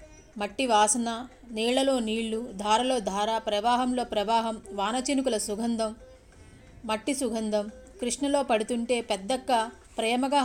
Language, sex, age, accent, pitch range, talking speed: English, female, 30-49, Indian, 215-255 Hz, 90 wpm